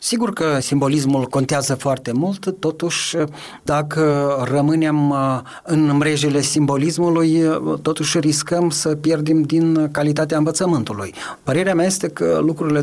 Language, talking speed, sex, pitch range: Romanian, 110 wpm, male, 135-165 Hz